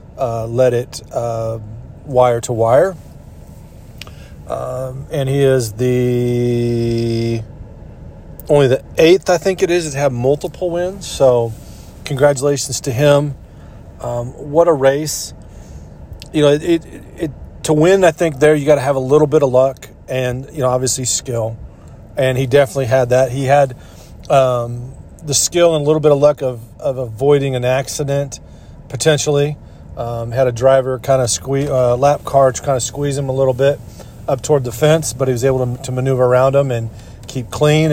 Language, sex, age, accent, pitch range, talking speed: English, male, 40-59, American, 120-145 Hz, 175 wpm